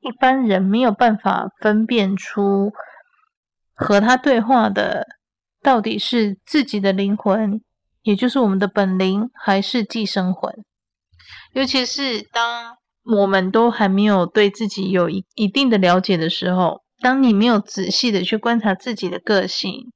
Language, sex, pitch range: Chinese, female, 195-240 Hz